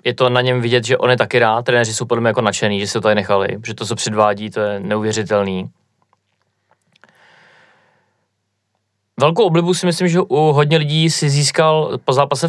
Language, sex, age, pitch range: Czech, male, 30-49, 115-130 Hz